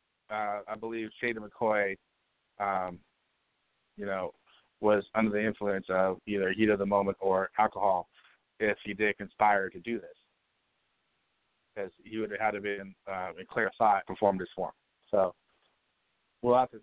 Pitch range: 100-115 Hz